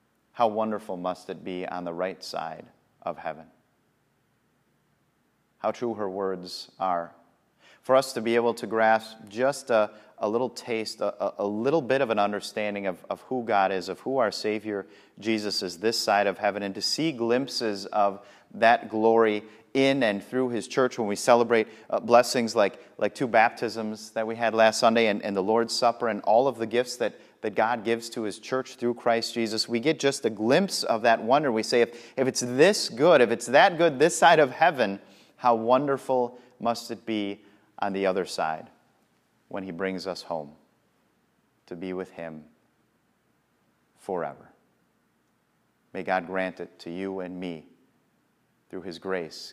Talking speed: 180 wpm